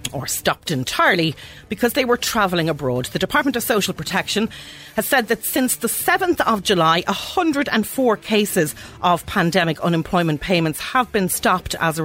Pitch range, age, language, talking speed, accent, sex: 160-215 Hz, 40-59, English, 160 wpm, Irish, female